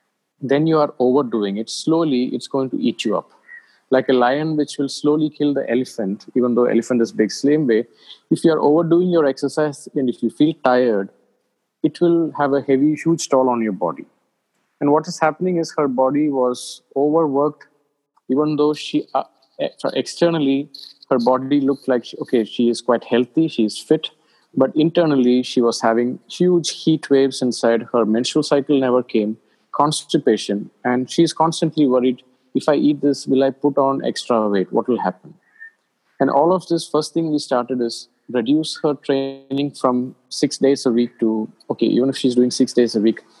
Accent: Indian